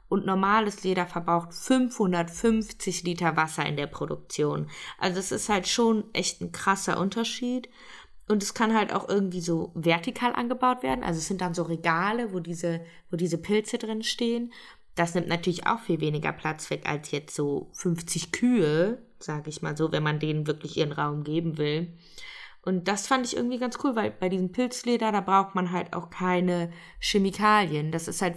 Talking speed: 185 wpm